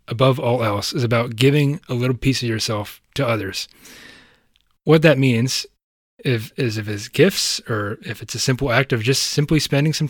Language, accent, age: English, American, 20-39